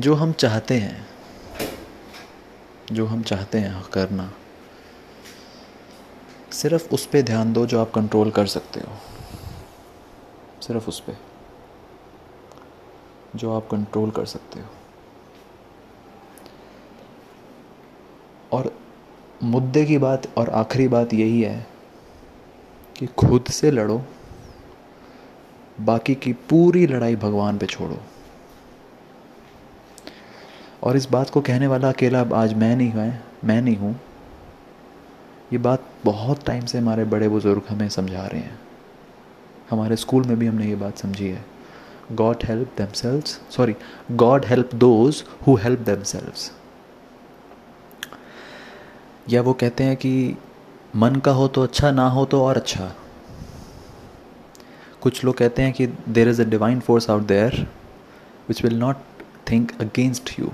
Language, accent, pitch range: Hindi, native, 110-130 Hz